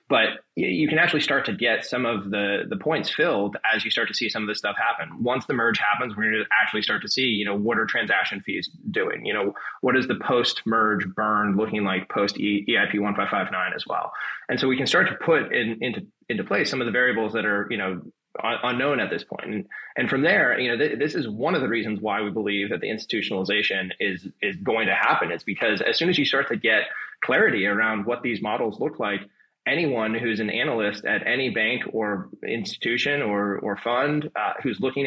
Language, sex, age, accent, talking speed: English, male, 20-39, American, 230 wpm